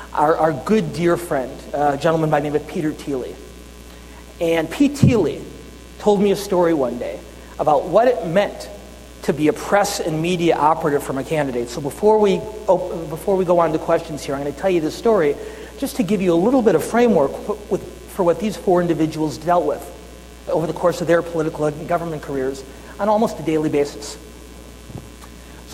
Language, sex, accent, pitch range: English, male, American, 140-195 Hz